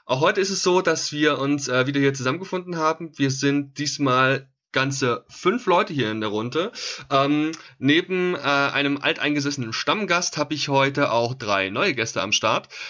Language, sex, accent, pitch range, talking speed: German, male, German, 115-140 Hz, 175 wpm